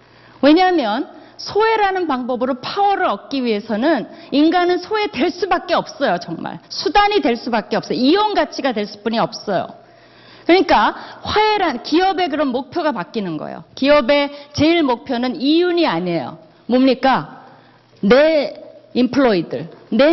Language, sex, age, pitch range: Korean, female, 40-59, 220-315 Hz